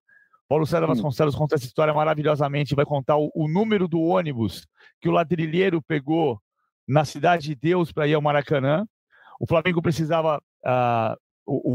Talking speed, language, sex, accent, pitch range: 160 wpm, Portuguese, male, Brazilian, 150-190 Hz